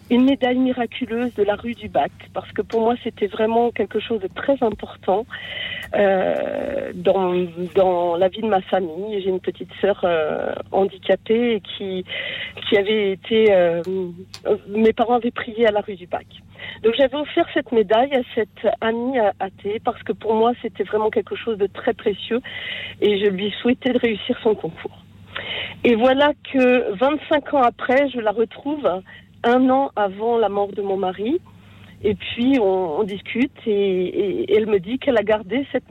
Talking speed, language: 180 wpm, French